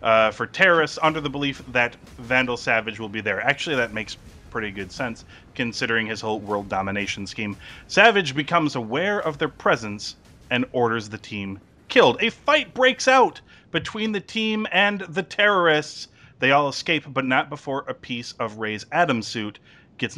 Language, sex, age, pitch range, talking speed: English, male, 30-49, 110-140 Hz, 170 wpm